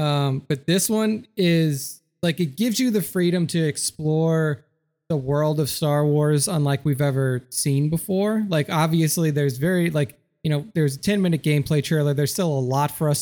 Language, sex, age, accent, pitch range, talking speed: English, male, 20-39, American, 140-165 Hz, 190 wpm